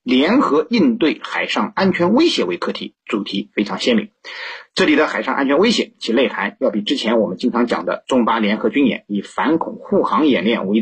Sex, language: male, Chinese